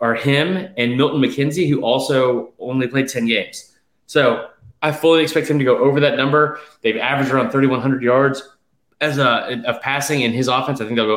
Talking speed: 200 wpm